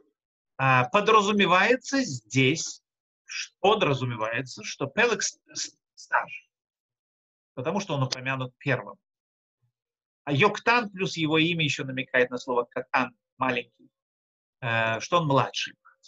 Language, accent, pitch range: Russian, native, 130-205 Hz